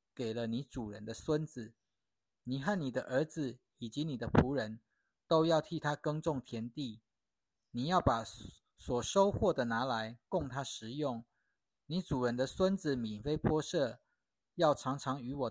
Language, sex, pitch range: Chinese, male, 115-160 Hz